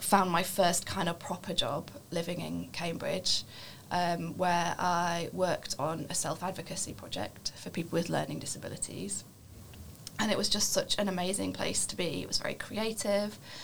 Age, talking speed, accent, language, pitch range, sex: 20-39, 165 wpm, British, English, 145-190 Hz, female